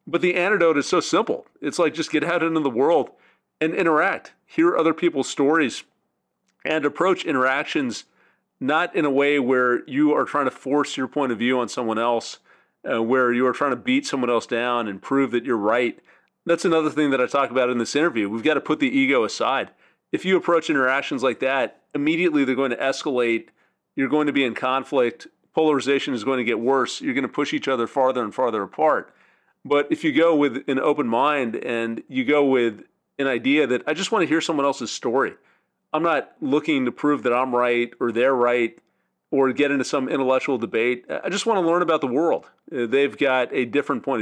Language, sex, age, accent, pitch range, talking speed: English, male, 40-59, American, 125-155 Hz, 215 wpm